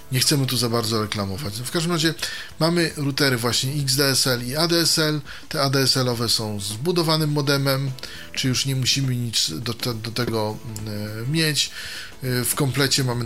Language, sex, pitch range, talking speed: Polish, male, 110-135 Hz, 140 wpm